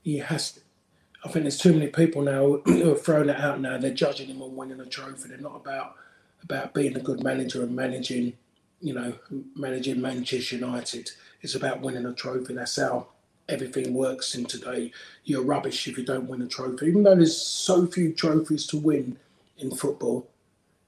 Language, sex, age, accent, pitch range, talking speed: English, male, 30-49, British, 130-145 Hz, 195 wpm